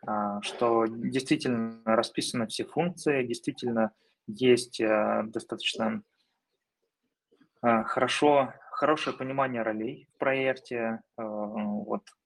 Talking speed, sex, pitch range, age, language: 75 wpm, male, 115-140 Hz, 20-39, Russian